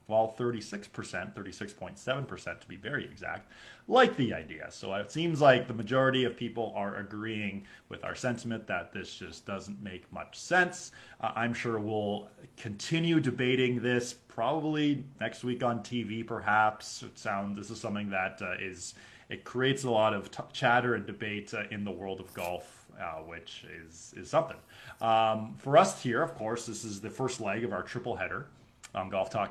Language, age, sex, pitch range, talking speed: English, 20-39, male, 105-150 Hz, 180 wpm